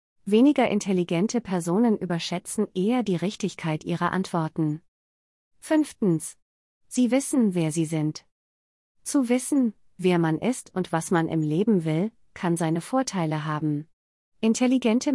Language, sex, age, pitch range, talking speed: German, female, 30-49, 165-225 Hz, 125 wpm